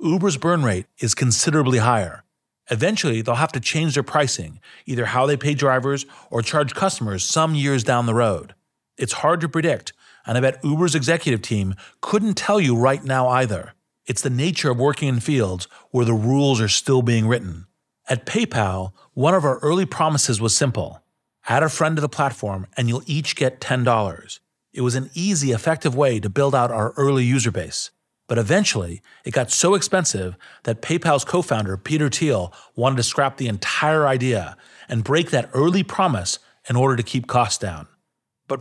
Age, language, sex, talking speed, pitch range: 40-59, English, male, 185 wpm, 115-155 Hz